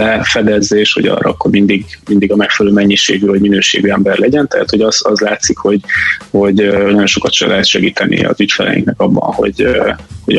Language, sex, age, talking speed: Hungarian, male, 20-39, 175 wpm